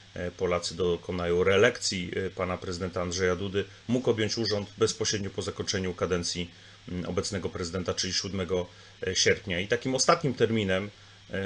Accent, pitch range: native, 95-110 Hz